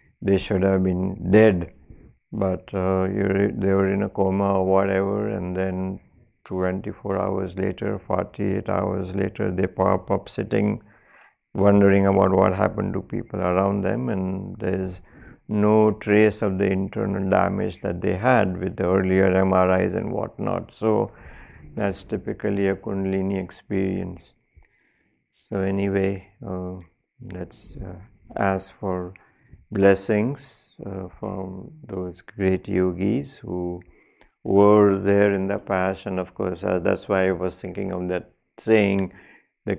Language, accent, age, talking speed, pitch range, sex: English, Indian, 60-79, 135 wpm, 95-100 Hz, male